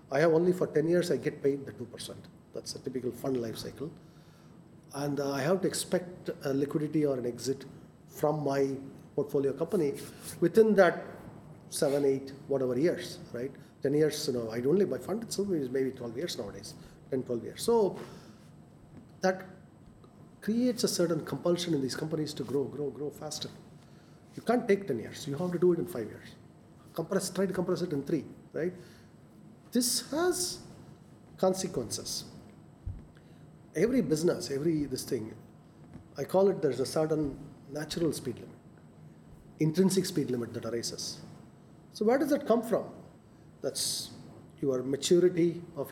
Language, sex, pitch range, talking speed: English, male, 140-180 Hz, 165 wpm